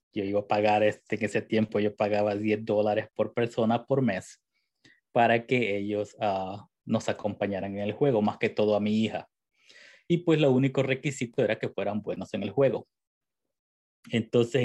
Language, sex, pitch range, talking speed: Spanish, male, 105-120 Hz, 180 wpm